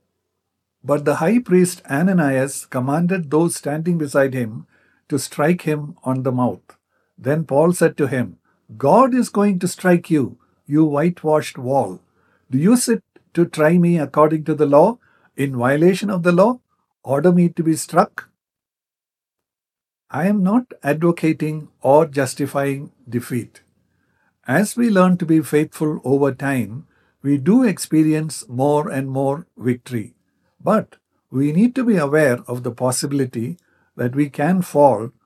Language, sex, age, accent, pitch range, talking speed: English, male, 60-79, Indian, 130-170 Hz, 145 wpm